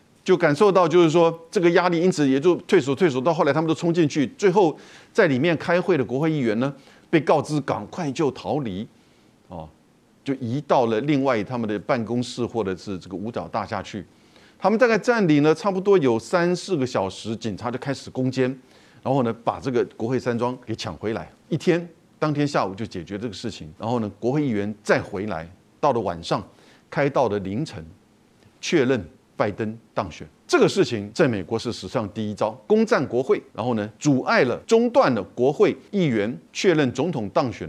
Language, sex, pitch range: Chinese, male, 110-170 Hz